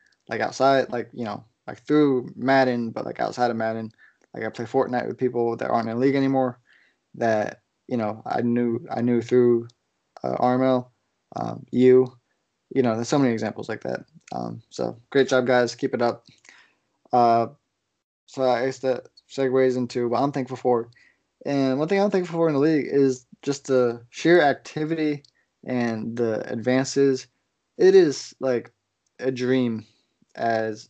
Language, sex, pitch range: English, male, 120-135 Hz